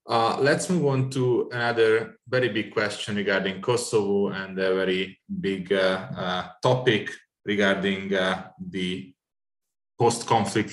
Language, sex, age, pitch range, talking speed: Hungarian, male, 20-39, 95-110 Hz, 125 wpm